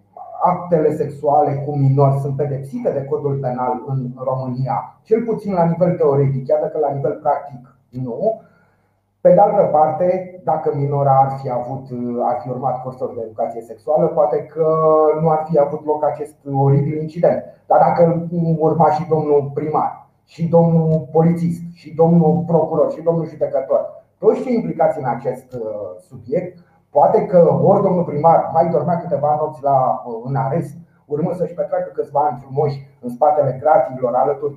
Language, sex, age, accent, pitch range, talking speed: Romanian, male, 30-49, native, 140-170 Hz, 155 wpm